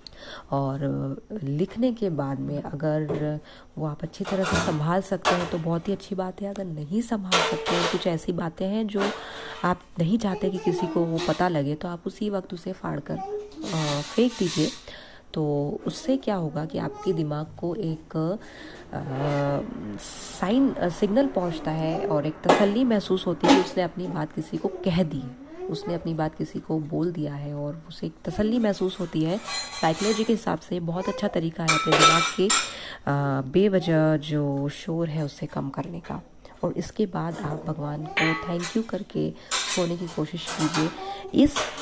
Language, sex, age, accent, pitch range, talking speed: Hindi, female, 20-39, native, 155-200 Hz, 175 wpm